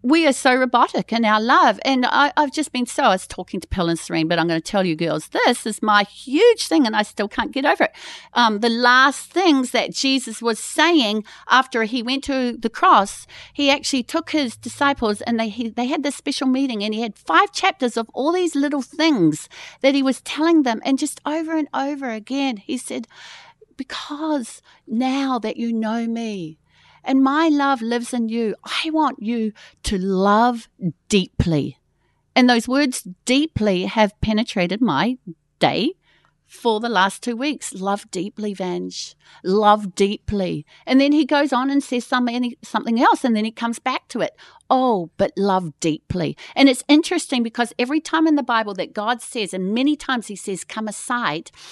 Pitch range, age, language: 210-280 Hz, 40-59, English